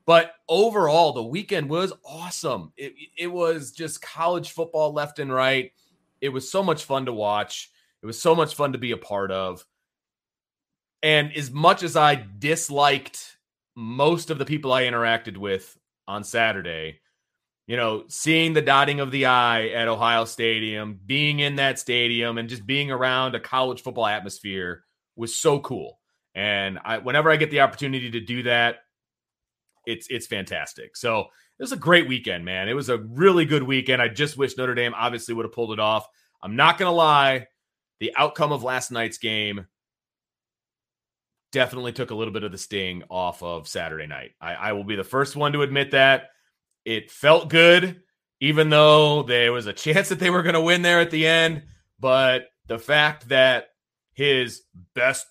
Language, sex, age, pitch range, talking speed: English, male, 30-49, 115-150 Hz, 180 wpm